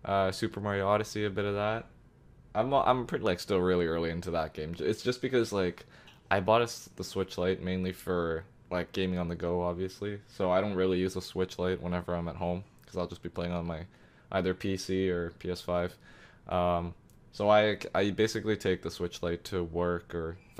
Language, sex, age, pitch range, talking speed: English, male, 20-39, 90-105 Hz, 210 wpm